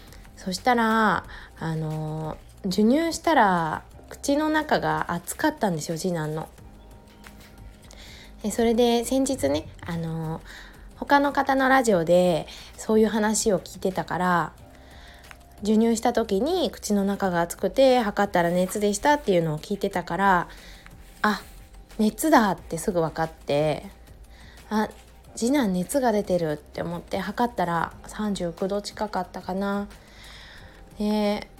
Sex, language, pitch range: female, Japanese, 175-230 Hz